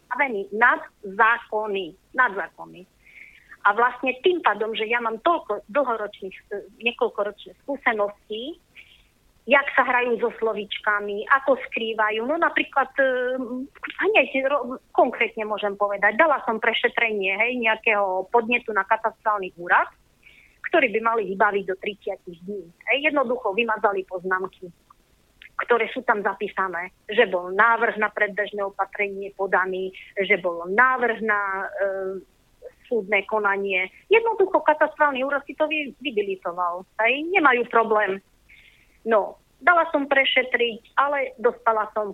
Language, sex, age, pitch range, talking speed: Slovak, female, 30-49, 200-255 Hz, 115 wpm